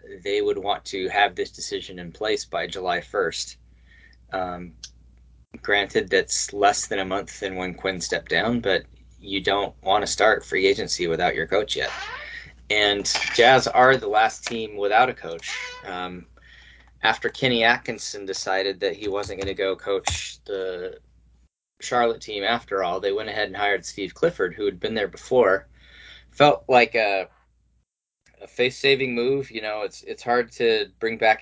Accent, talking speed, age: American, 170 wpm, 20-39